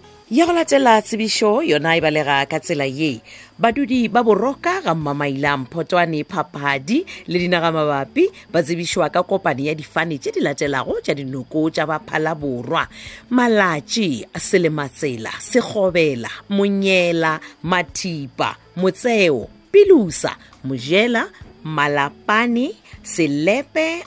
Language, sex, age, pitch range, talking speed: English, female, 40-59, 140-210 Hz, 100 wpm